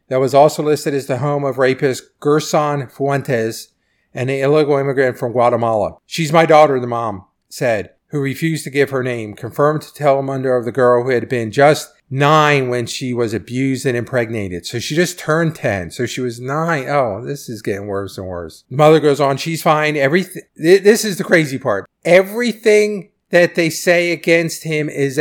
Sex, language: male, English